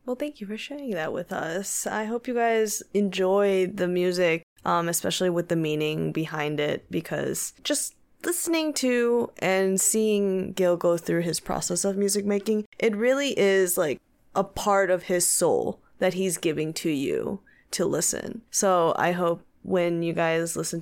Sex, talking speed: female, 170 wpm